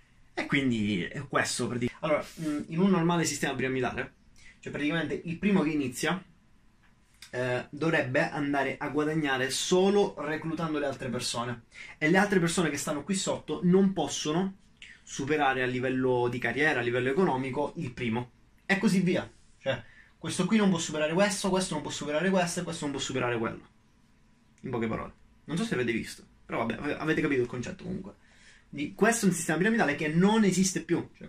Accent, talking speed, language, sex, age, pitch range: native, 180 wpm, Italian, male, 20-39, 130-175 Hz